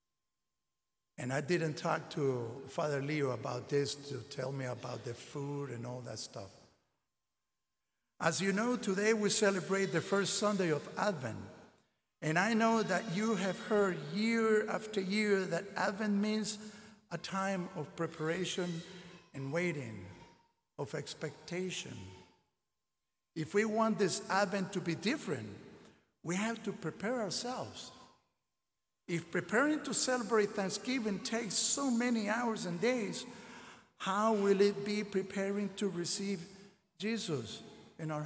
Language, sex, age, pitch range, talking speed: English, male, 60-79, 150-205 Hz, 135 wpm